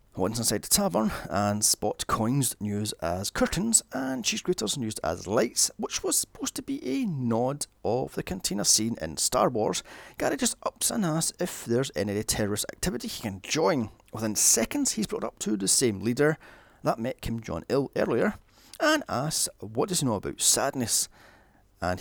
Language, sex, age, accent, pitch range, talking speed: English, male, 30-49, British, 100-155 Hz, 180 wpm